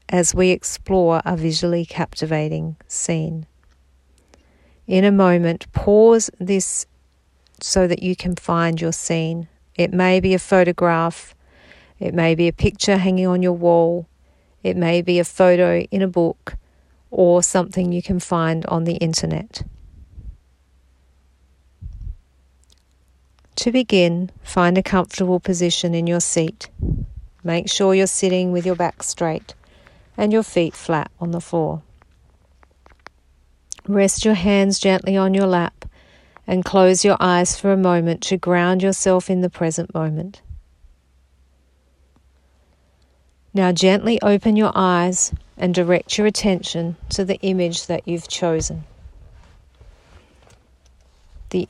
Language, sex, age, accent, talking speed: English, female, 50-69, Australian, 130 wpm